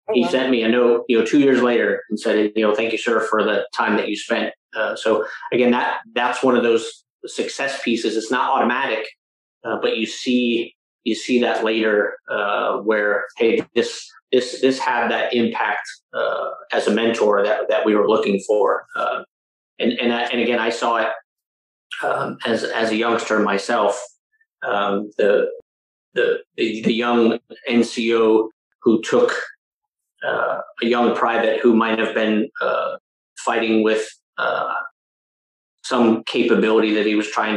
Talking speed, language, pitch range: 170 wpm, English, 110-135 Hz